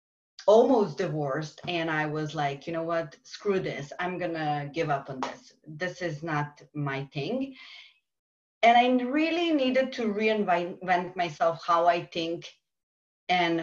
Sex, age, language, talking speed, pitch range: female, 30-49, English, 145 wpm, 170-215 Hz